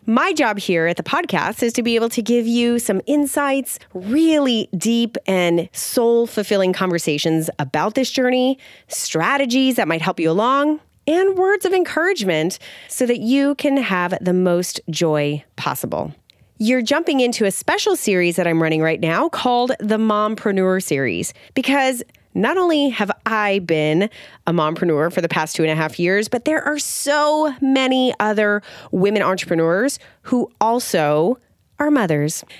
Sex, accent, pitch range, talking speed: female, American, 175-265 Hz, 155 wpm